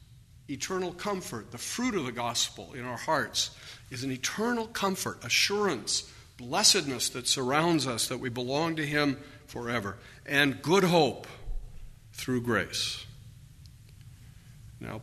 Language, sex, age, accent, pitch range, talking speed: English, male, 50-69, American, 115-145 Hz, 125 wpm